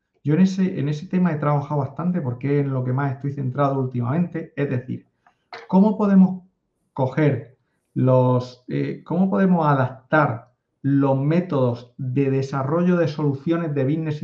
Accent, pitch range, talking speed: Spanish, 130-160 Hz, 150 wpm